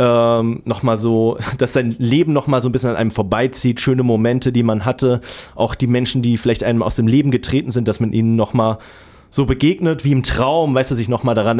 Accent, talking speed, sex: German, 245 wpm, male